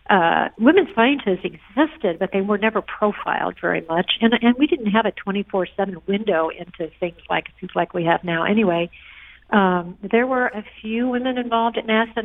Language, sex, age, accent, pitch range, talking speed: English, female, 50-69, American, 175-210 Hz, 180 wpm